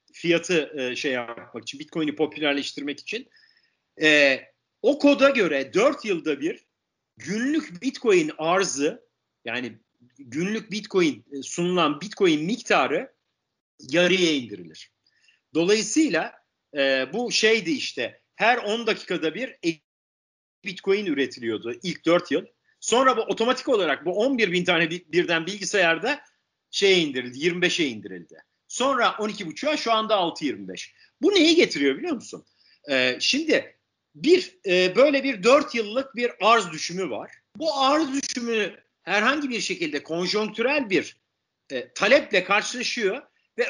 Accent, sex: native, male